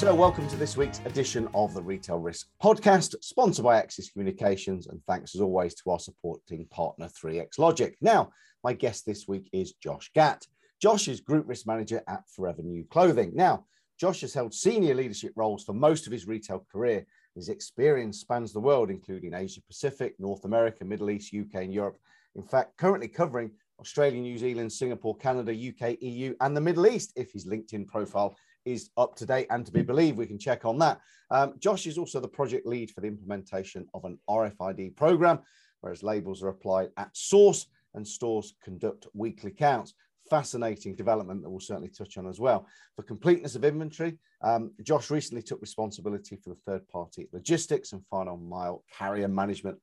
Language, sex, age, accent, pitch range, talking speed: English, male, 40-59, British, 100-135 Hz, 190 wpm